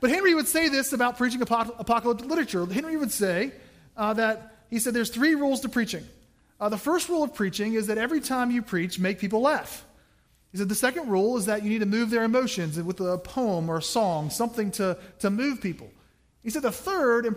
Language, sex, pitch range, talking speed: English, male, 190-250 Hz, 225 wpm